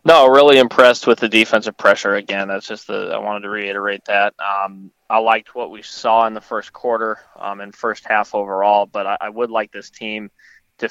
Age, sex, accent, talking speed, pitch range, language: 20-39, male, American, 215 wpm, 100-115 Hz, English